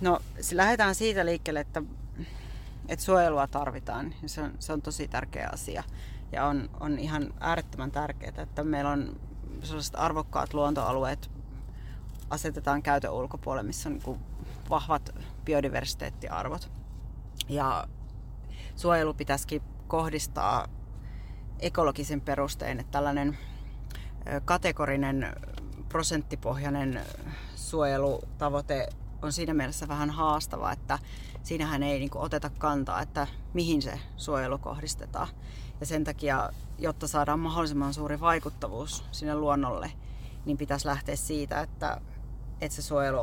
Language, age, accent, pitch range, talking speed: Finnish, 30-49, native, 125-155 Hz, 105 wpm